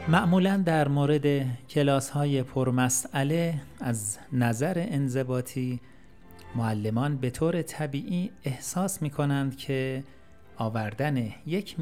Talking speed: 95 wpm